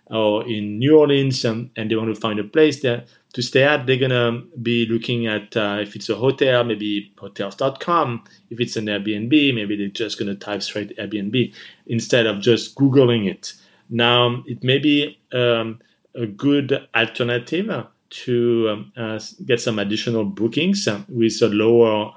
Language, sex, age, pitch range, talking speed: English, male, 40-59, 105-130 Hz, 170 wpm